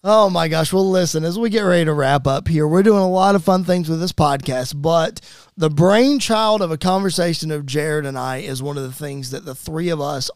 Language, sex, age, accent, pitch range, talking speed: English, male, 30-49, American, 155-220 Hz, 250 wpm